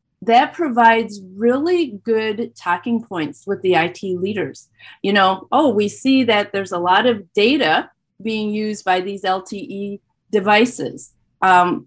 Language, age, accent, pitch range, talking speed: English, 40-59, American, 195-250 Hz, 140 wpm